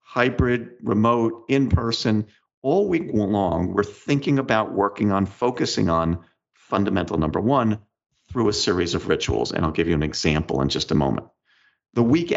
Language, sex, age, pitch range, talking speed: English, male, 50-69, 85-125 Hz, 160 wpm